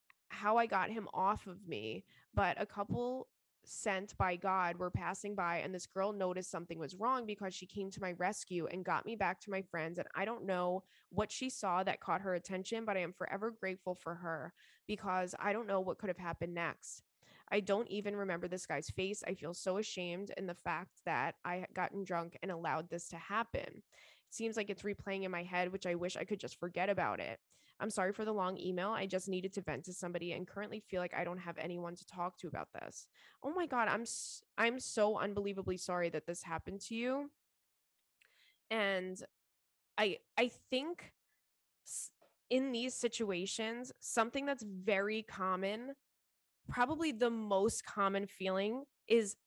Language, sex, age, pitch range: English, female, 20-39, 180-220 Hz